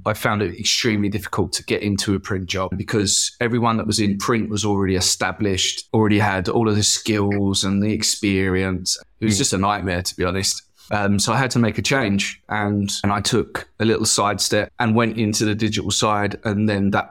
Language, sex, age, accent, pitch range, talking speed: English, male, 20-39, British, 100-115 Hz, 215 wpm